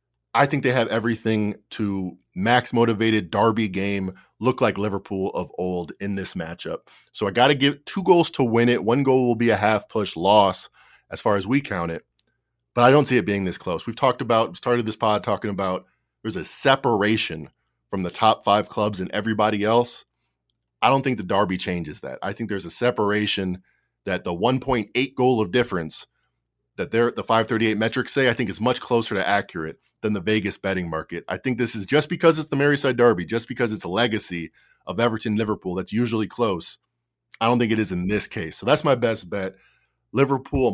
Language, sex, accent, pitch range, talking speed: English, male, American, 100-130 Hz, 205 wpm